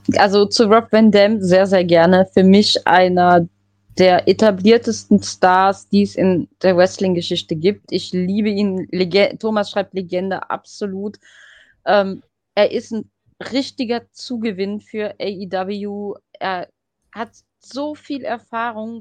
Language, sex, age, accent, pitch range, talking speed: German, female, 20-39, German, 190-230 Hz, 125 wpm